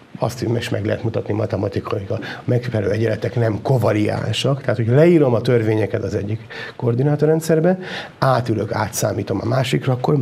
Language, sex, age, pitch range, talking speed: Hungarian, male, 60-79, 105-130 Hz, 145 wpm